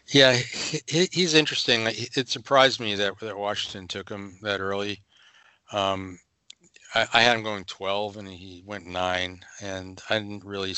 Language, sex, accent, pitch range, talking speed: English, male, American, 85-100 Hz, 160 wpm